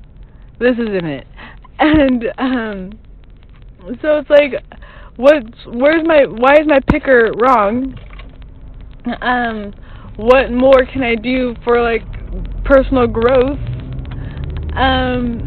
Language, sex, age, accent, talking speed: English, female, 20-39, American, 110 wpm